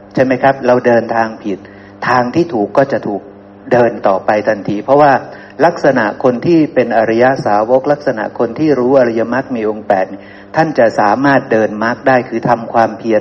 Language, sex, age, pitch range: Thai, male, 60-79, 110-140 Hz